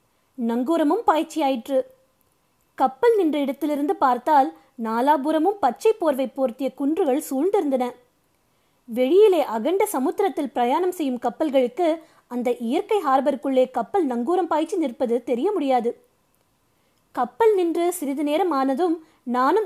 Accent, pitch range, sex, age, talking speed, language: native, 260-360 Hz, female, 20-39, 100 wpm, Tamil